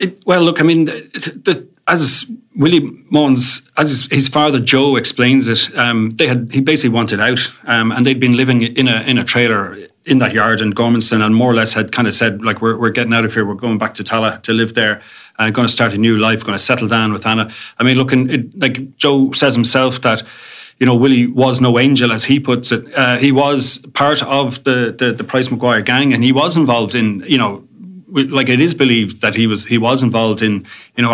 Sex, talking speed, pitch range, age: male, 240 wpm, 110-130 Hz, 30-49